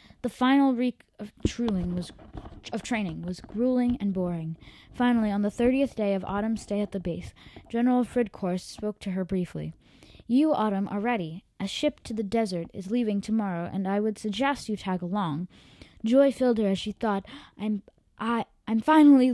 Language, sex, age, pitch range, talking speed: English, female, 20-39, 185-235 Hz, 170 wpm